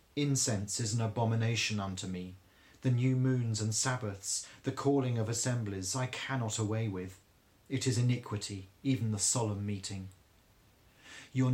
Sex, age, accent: male, 40-59, British